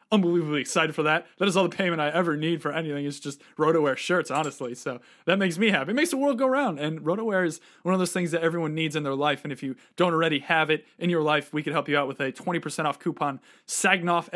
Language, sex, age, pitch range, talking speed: English, male, 20-39, 150-200 Hz, 270 wpm